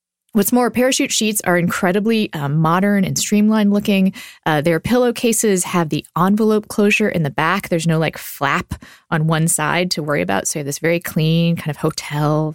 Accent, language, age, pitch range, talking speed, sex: American, English, 20-39, 155-210 Hz, 190 wpm, female